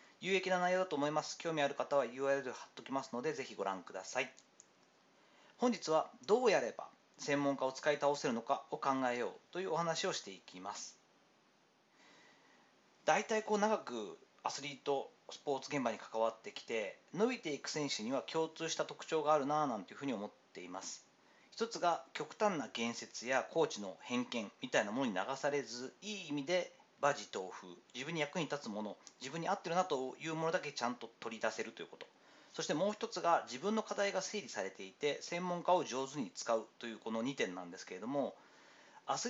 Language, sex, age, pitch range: Japanese, male, 40-59, 140-185 Hz